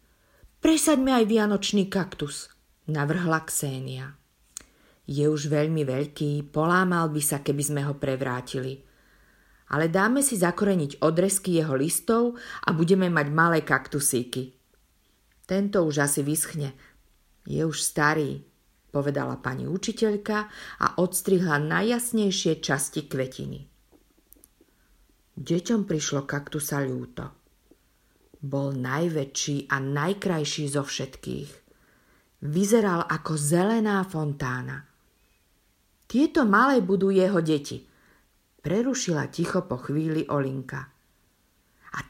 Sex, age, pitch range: female, 50-69, 140-190 Hz